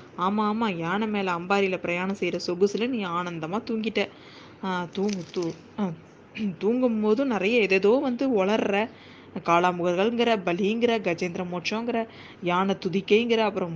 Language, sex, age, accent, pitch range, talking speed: Tamil, female, 20-39, native, 180-230 Hz, 110 wpm